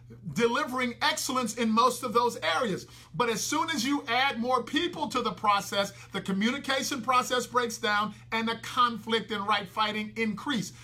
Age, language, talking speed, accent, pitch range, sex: 50-69, English, 165 wpm, American, 210-255 Hz, male